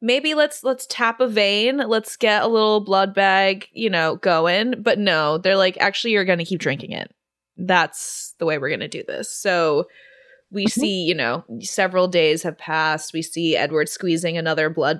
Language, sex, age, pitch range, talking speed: English, female, 20-39, 160-210 Hz, 195 wpm